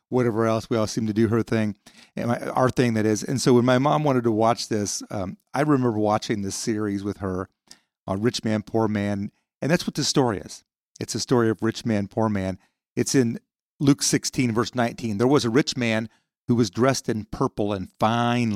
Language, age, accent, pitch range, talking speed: English, 40-59, American, 105-125 Hz, 215 wpm